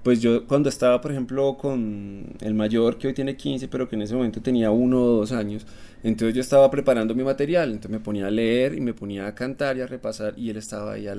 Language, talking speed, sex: Spanish, 250 wpm, male